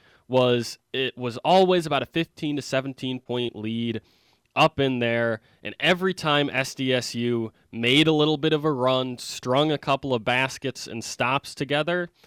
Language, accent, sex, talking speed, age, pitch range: English, American, male, 160 wpm, 20-39, 115-140 Hz